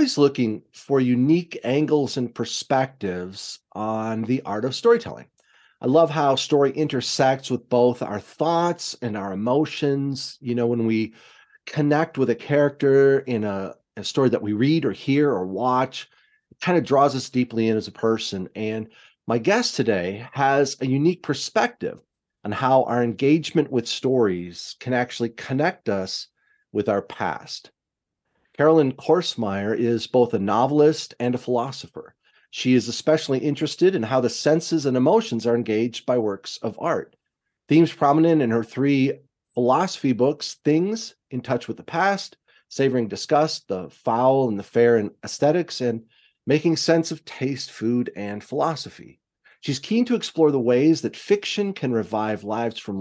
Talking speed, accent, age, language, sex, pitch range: 160 wpm, American, 40-59, English, male, 115-150 Hz